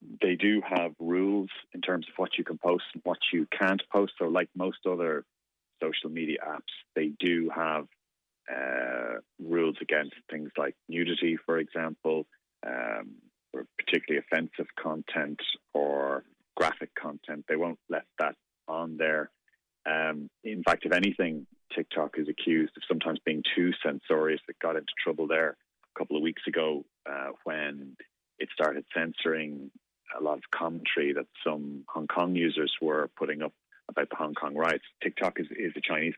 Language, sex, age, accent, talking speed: English, male, 30-49, Irish, 165 wpm